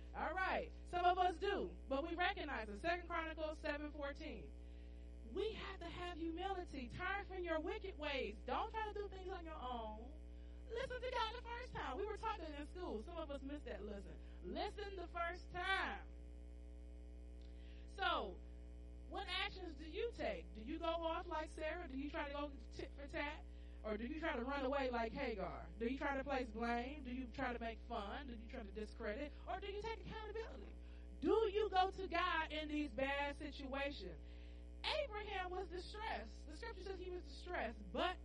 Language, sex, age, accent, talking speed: English, female, 30-49, American, 195 wpm